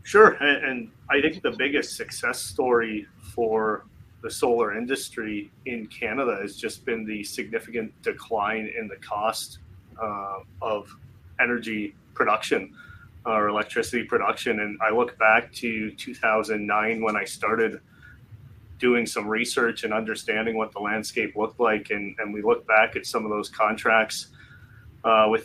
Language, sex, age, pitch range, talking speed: English, male, 30-49, 105-115 Hz, 145 wpm